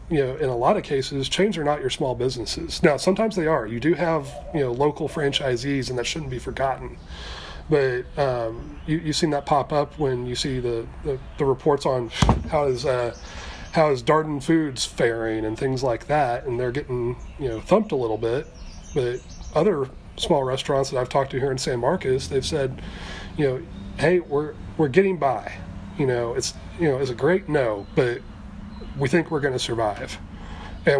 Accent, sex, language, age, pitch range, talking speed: American, male, English, 30-49, 120-145 Hz, 200 wpm